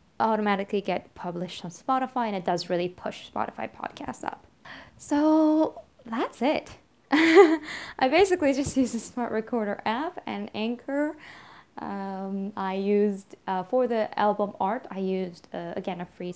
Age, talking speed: 10-29, 145 wpm